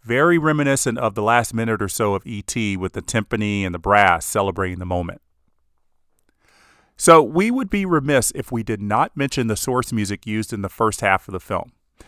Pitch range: 105-140 Hz